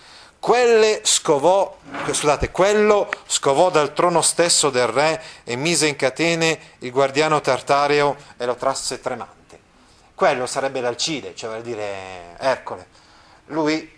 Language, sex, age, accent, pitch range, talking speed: Italian, male, 30-49, native, 120-160 Hz, 125 wpm